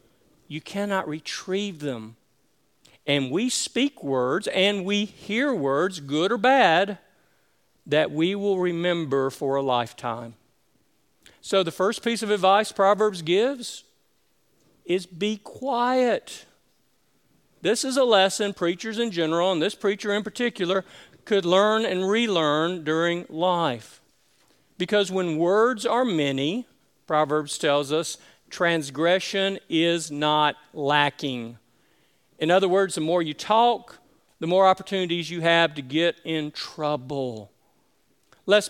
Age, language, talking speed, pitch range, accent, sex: 50-69, English, 125 wpm, 150-195 Hz, American, male